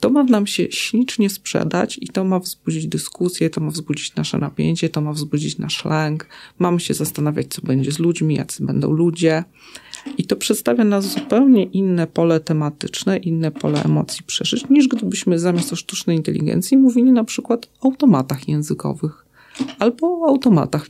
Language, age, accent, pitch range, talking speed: Polish, 40-59, native, 155-210 Hz, 165 wpm